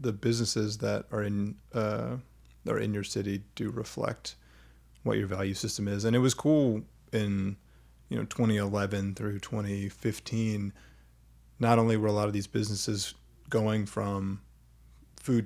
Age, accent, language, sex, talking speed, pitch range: 30-49, American, English, male, 150 wpm, 95-110 Hz